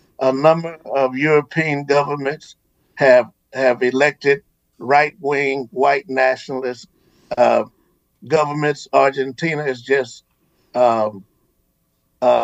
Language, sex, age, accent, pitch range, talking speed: English, male, 60-79, American, 140-175 Hz, 85 wpm